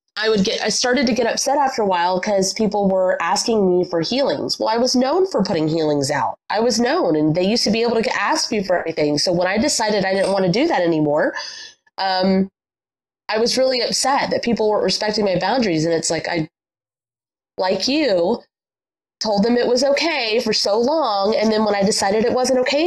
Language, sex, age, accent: English, female, 20-39, American